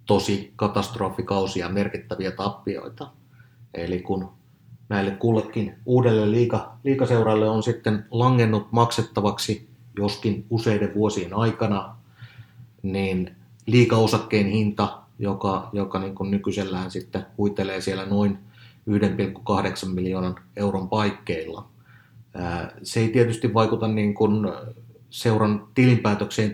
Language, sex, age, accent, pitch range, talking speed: Finnish, male, 30-49, native, 95-115 Hz, 100 wpm